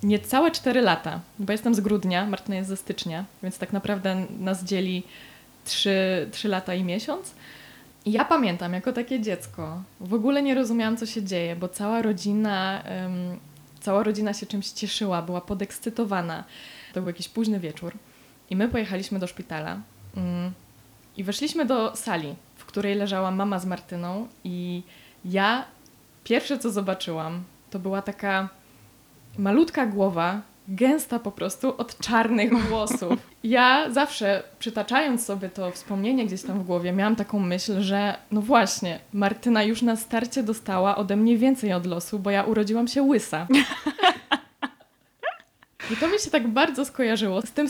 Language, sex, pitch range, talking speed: Polish, female, 185-235 Hz, 155 wpm